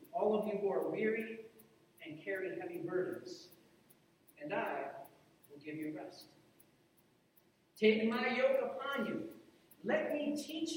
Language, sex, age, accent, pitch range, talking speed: English, male, 40-59, American, 170-275 Hz, 135 wpm